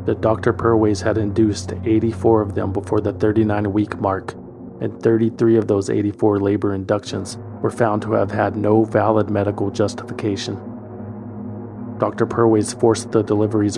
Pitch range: 105-115 Hz